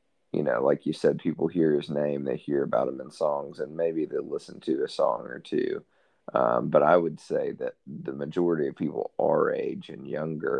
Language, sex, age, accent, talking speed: English, male, 30-49, American, 215 wpm